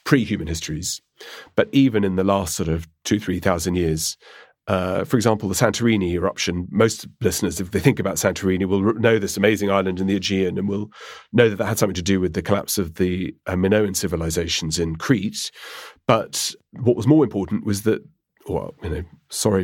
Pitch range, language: 90-105 Hz, English